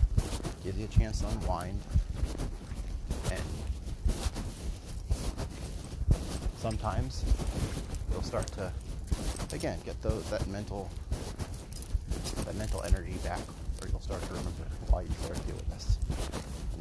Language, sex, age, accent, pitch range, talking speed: English, male, 30-49, American, 80-95 Hz, 110 wpm